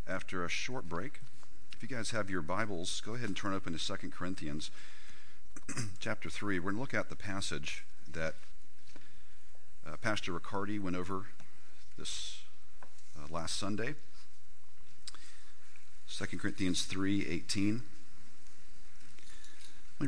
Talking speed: 125 wpm